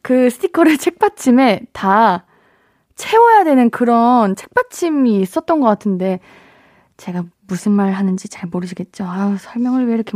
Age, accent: 20-39, native